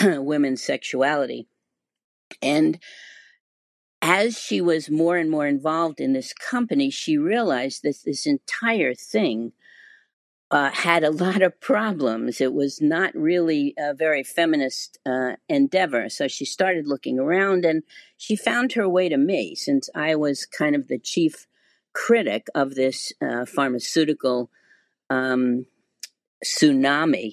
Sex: female